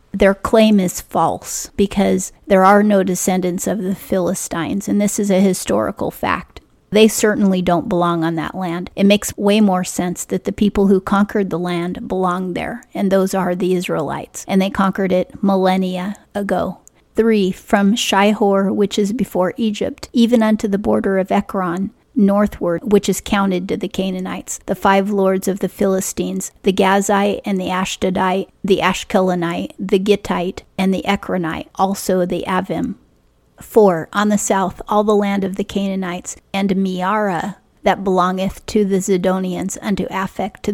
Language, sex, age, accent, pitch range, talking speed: English, female, 30-49, American, 180-200 Hz, 165 wpm